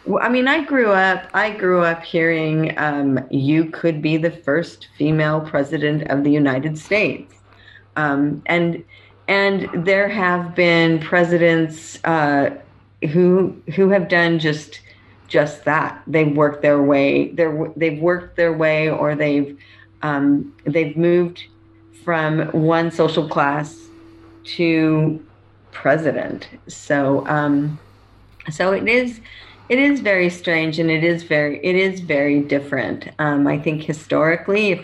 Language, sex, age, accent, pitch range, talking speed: English, female, 40-59, American, 145-170 Hz, 135 wpm